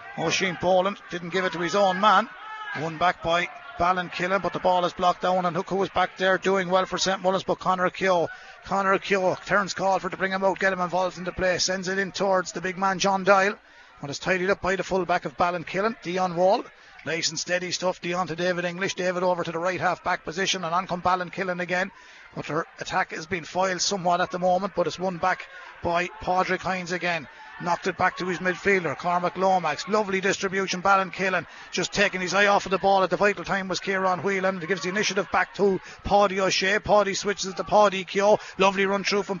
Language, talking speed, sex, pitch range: English, 235 wpm, male, 180-195 Hz